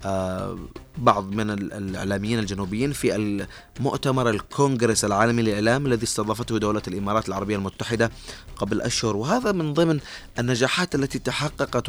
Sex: male